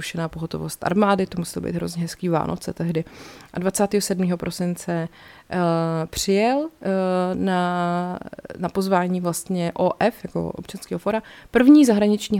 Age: 30-49